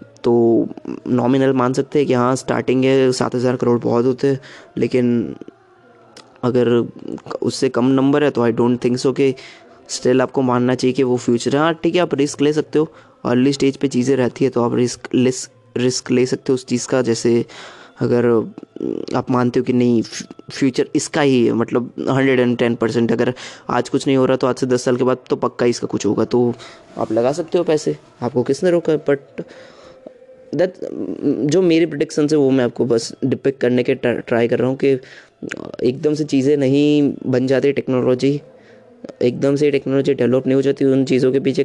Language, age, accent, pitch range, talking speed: Hindi, 20-39, native, 125-140 Hz, 195 wpm